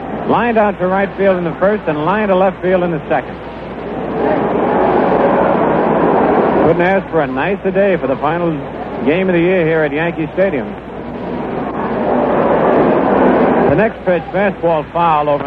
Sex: male